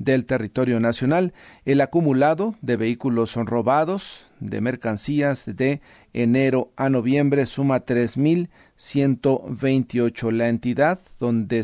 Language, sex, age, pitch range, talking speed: Spanish, male, 40-59, 120-145 Hz, 105 wpm